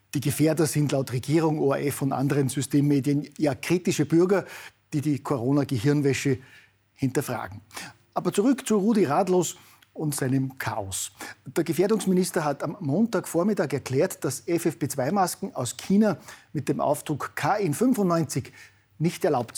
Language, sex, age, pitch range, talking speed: German, male, 50-69, 135-175 Hz, 125 wpm